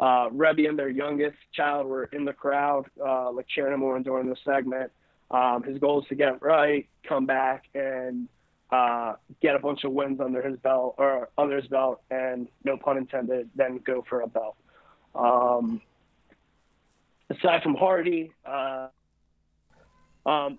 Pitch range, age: 130-145 Hz, 20-39